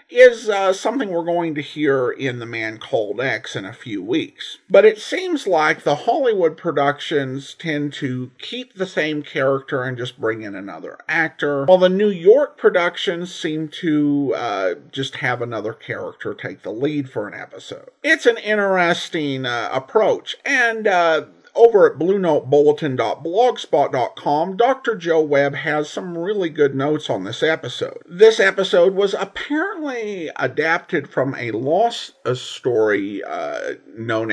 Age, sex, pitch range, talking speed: 50-69, male, 140-235 Hz, 150 wpm